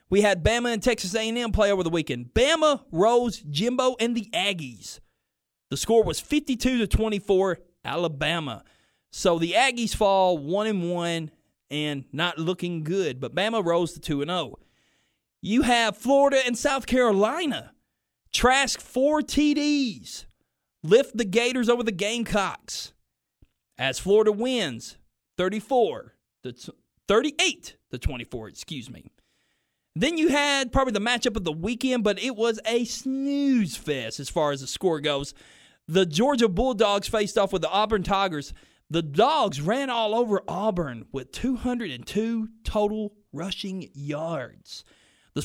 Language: English